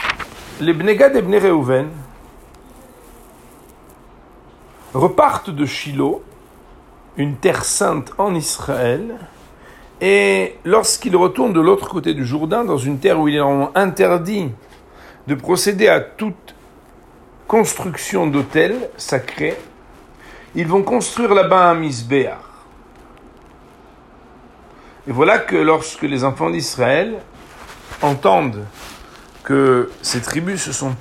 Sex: male